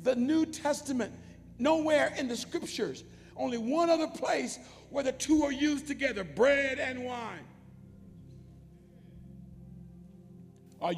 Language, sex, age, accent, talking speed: English, male, 60-79, American, 115 wpm